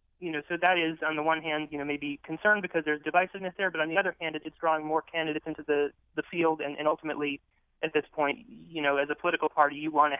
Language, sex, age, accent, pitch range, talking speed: English, male, 20-39, American, 145-165 Hz, 265 wpm